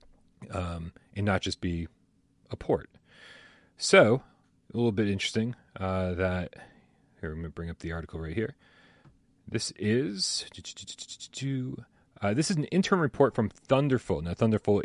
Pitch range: 90-115 Hz